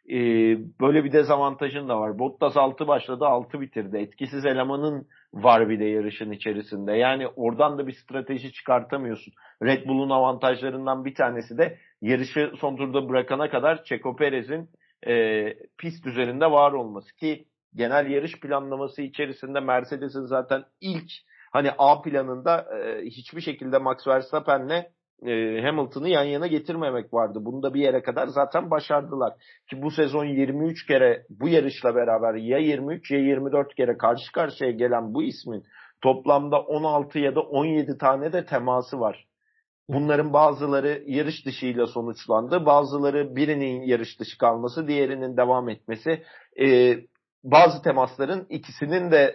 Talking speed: 140 wpm